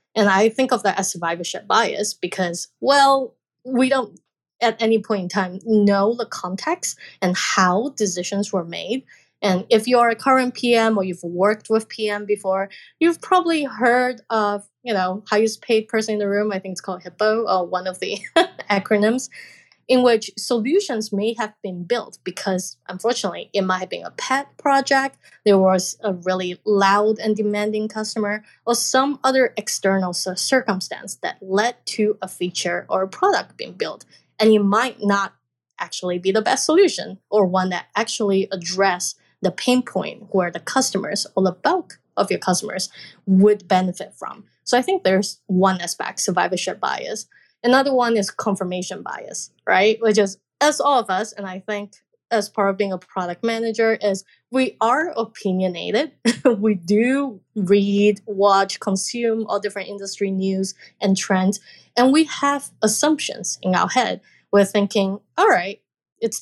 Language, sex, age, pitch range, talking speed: English, female, 20-39, 190-235 Hz, 165 wpm